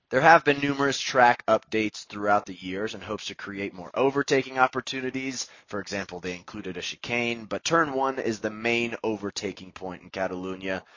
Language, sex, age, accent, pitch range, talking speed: English, male, 20-39, American, 95-130 Hz, 175 wpm